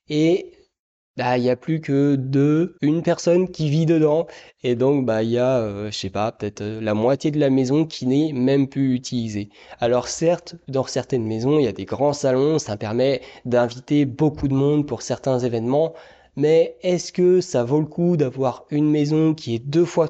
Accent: French